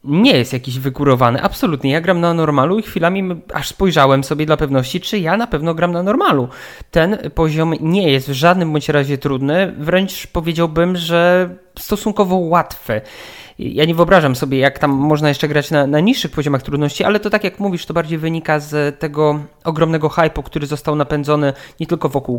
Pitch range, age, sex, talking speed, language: 140-180 Hz, 20-39, male, 185 wpm, Polish